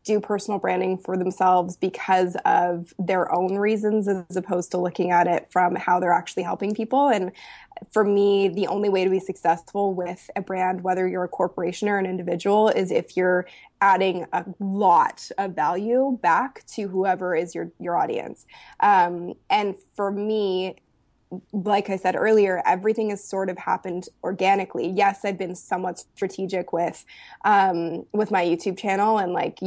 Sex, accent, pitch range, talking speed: female, American, 180-210 Hz, 170 wpm